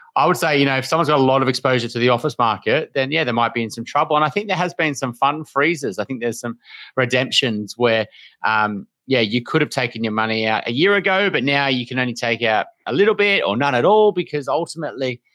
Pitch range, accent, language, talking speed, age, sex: 110-140 Hz, Australian, English, 260 wpm, 30-49, male